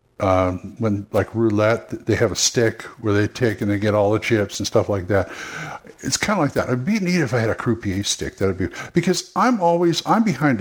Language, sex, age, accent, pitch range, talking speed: English, male, 60-79, American, 95-130 Hz, 230 wpm